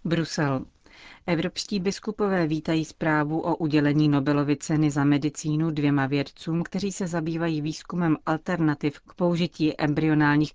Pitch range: 145-165 Hz